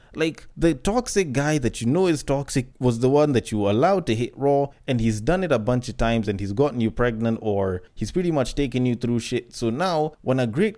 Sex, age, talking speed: male, 20-39, 250 wpm